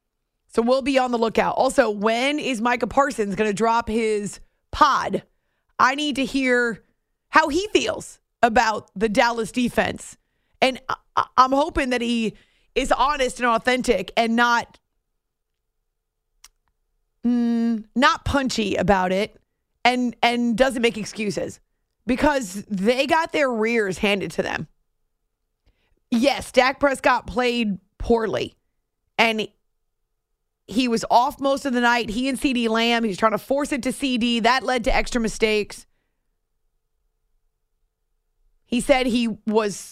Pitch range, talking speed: 220-260 Hz, 140 wpm